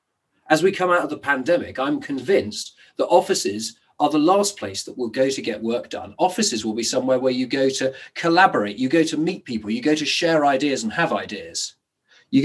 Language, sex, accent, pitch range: English, male, British, 110-165 Hz